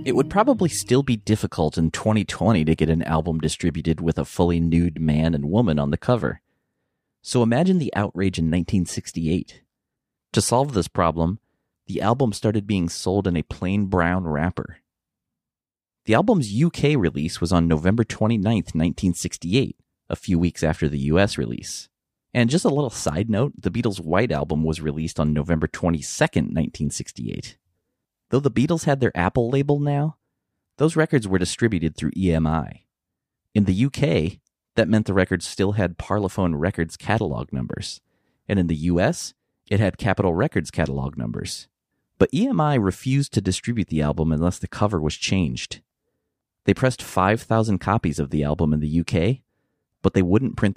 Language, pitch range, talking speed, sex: English, 80-115 Hz, 165 wpm, male